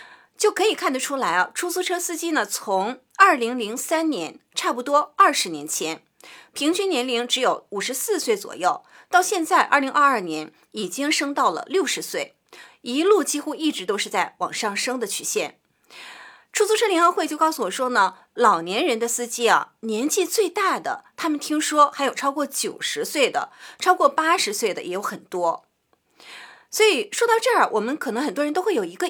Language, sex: Chinese, female